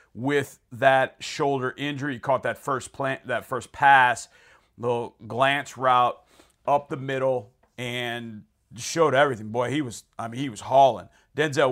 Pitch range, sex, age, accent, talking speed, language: 115-140 Hz, male, 40-59, American, 155 wpm, English